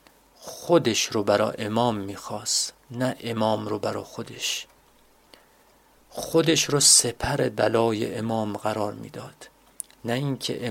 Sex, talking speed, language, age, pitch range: male, 105 wpm, Persian, 40-59, 110-125 Hz